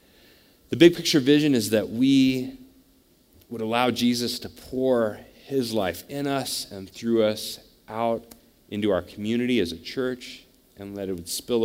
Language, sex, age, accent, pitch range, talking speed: English, male, 30-49, American, 95-130 Hz, 150 wpm